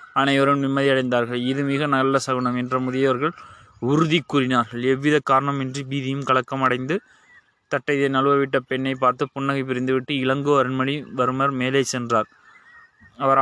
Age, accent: 20-39, native